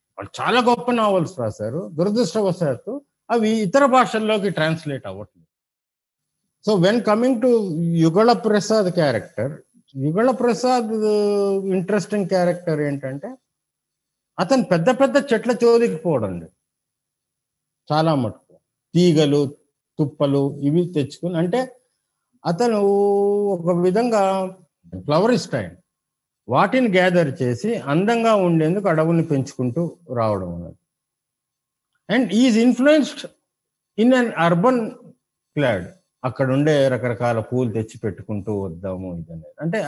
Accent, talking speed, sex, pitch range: native, 100 wpm, male, 135-220 Hz